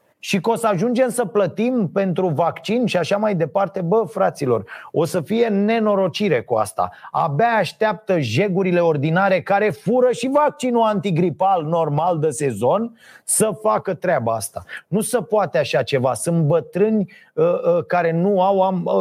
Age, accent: 30-49, native